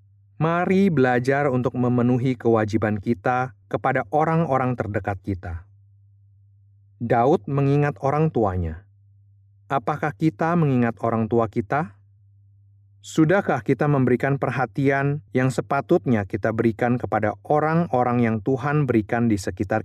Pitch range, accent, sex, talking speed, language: 100-140 Hz, native, male, 105 wpm, Indonesian